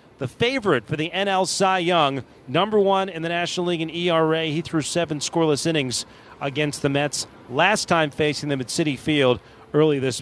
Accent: American